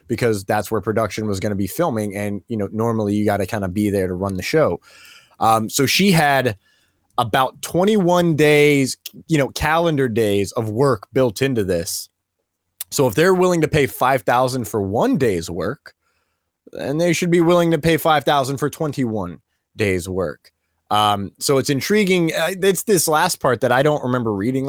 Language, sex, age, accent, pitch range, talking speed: English, male, 20-39, American, 110-160 Hz, 180 wpm